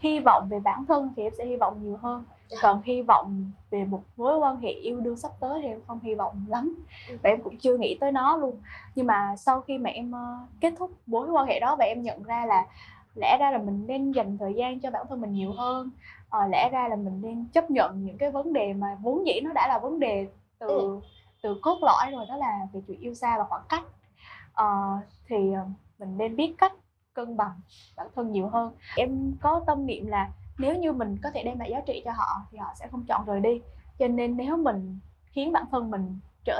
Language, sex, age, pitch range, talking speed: Vietnamese, female, 10-29, 205-270 Hz, 240 wpm